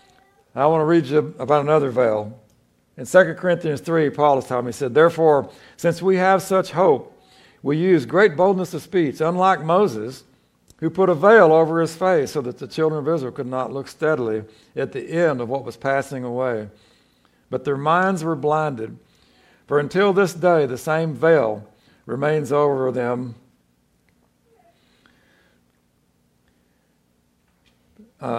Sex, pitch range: male, 115-160 Hz